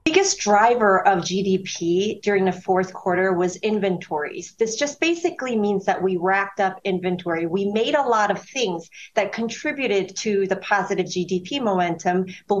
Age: 40-59